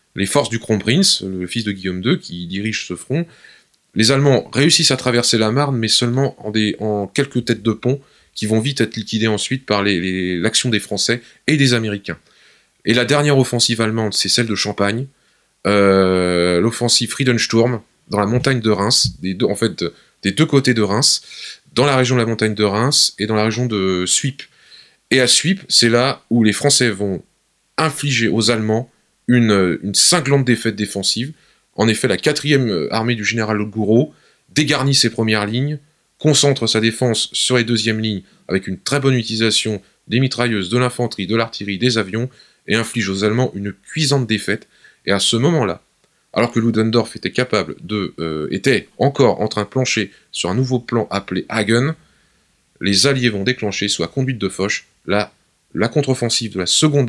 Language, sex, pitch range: French, male, 105-125 Hz